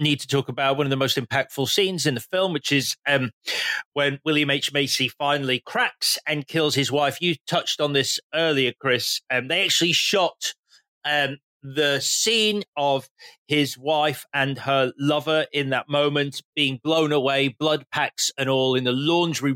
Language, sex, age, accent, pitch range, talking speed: English, male, 30-49, British, 135-170 Hz, 180 wpm